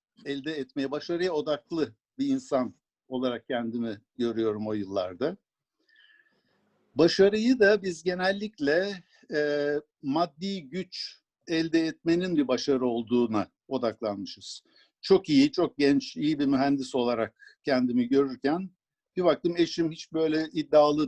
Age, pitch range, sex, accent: 60-79, 135-200 Hz, male, native